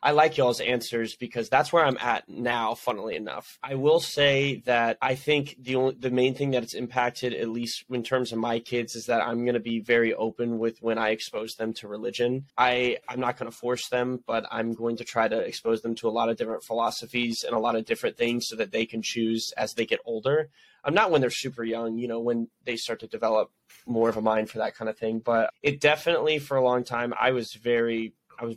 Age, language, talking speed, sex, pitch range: 20-39, English, 250 wpm, male, 115-125 Hz